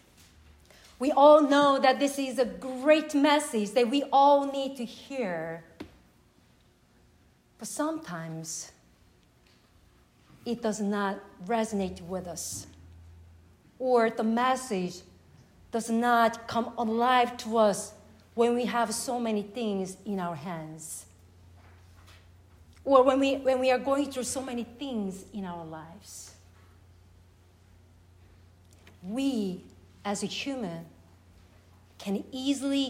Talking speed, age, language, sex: 110 wpm, 40-59, English, female